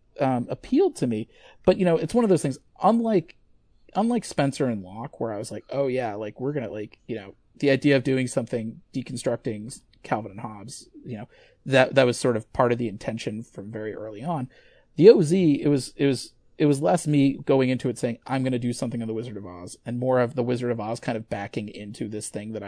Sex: male